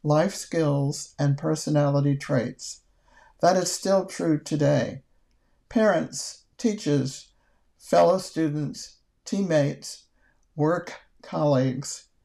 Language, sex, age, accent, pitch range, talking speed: English, male, 60-79, American, 140-170 Hz, 85 wpm